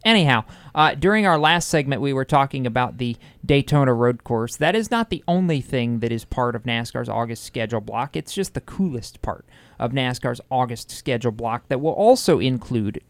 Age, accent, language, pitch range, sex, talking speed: 40-59, American, English, 120-155 Hz, male, 195 wpm